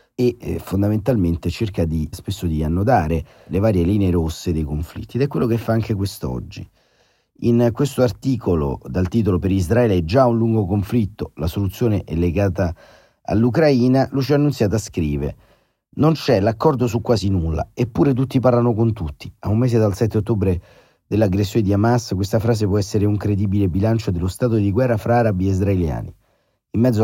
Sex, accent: male, native